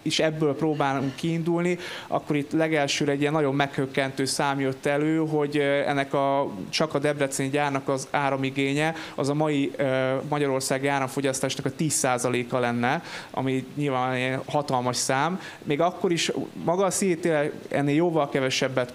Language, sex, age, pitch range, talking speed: Hungarian, male, 20-39, 130-150 Hz, 145 wpm